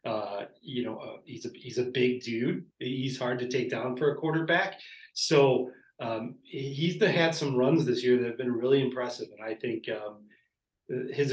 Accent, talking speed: American, 195 wpm